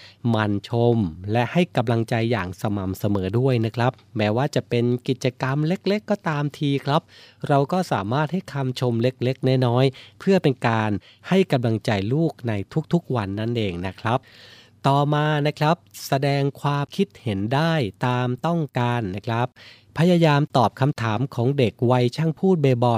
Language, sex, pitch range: Thai, male, 110-140 Hz